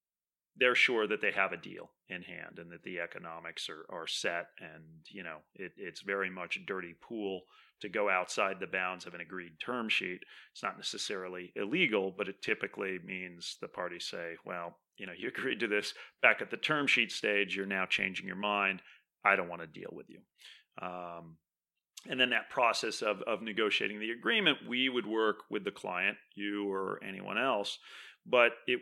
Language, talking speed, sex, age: English, 195 wpm, male, 30-49